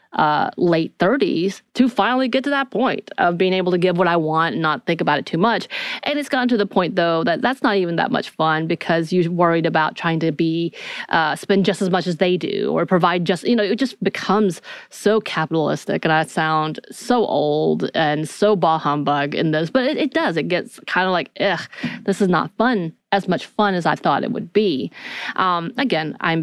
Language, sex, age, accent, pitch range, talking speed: English, female, 30-49, American, 160-255 Hz, 225 wpm